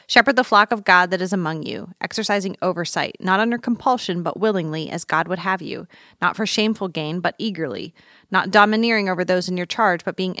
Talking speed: 210 wpm